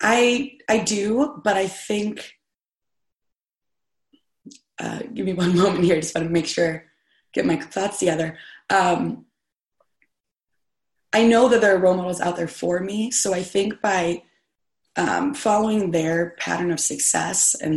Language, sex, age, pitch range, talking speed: English, female, 20-39, 165-205 Hz, 150 wpm